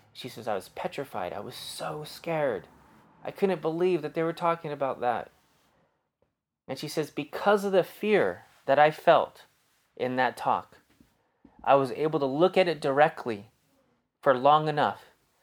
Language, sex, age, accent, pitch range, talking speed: English, male, 30-49, American, 130-165 Hz, 165 wpm